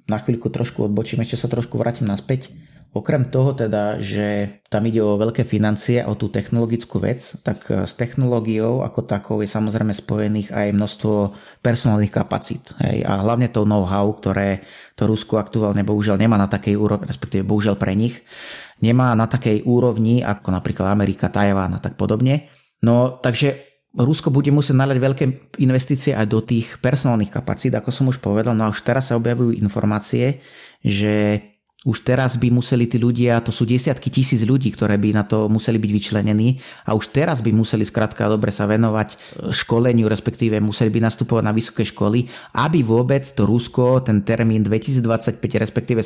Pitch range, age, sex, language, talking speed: 105-125 Hz, 30-49, male, Slovak, 170 wpm